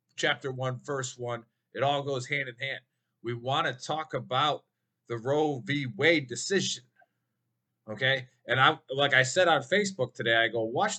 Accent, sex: American, male